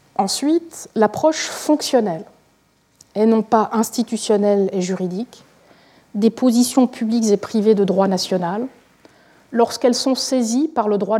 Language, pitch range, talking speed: French, 200-255 Hz, 125 wpm